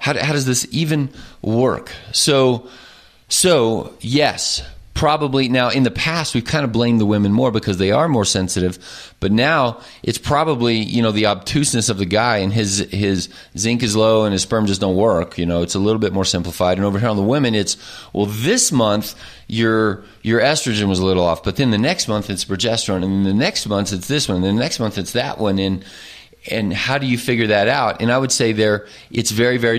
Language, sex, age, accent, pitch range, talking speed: English, male, 30-49, American, 100-130 Hz, 225 wpm